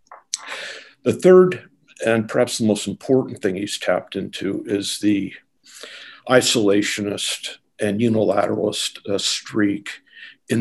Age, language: 50-69, English